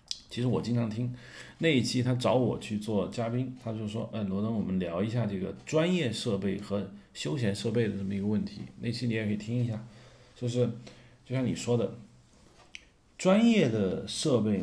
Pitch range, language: 100-125 Hz, Chinese